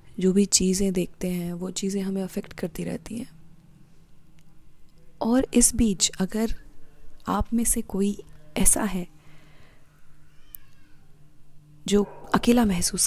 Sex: female